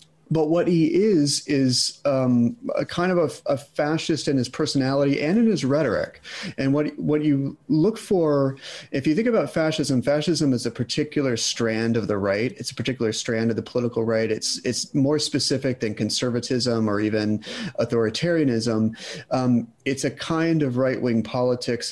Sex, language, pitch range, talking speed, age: male, English, 110-140 Hz, 170 wpm, 30-49